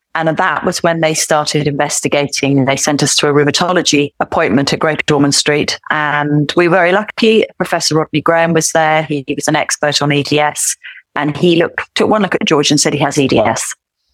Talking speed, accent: 205 wpm, British